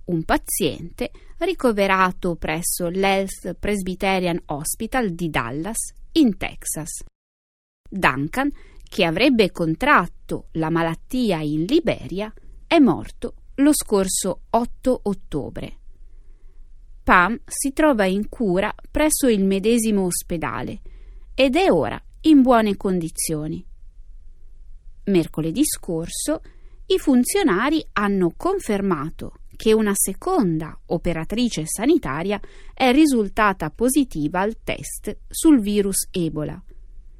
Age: 20-39